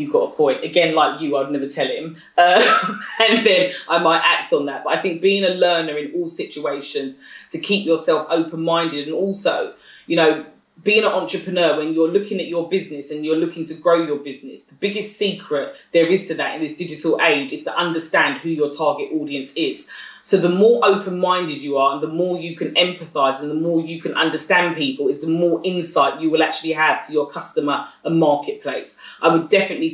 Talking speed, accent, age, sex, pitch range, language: 215 wpm, British, 20-39, female, 160-205 Hz, English